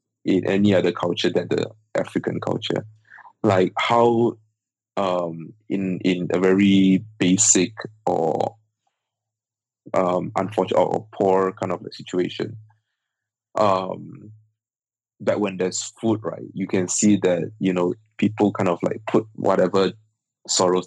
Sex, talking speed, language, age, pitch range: male, 125 wpm, English, 20-39, 90-110 Hz